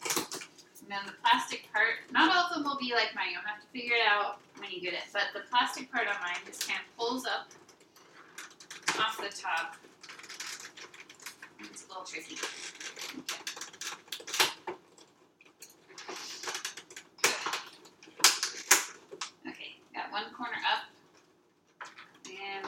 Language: English